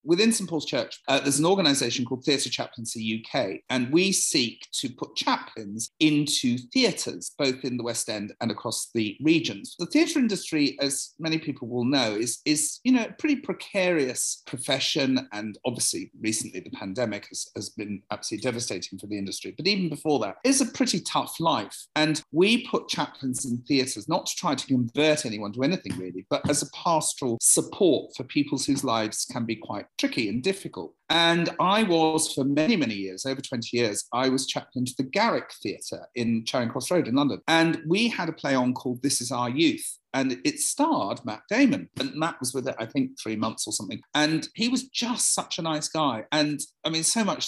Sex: male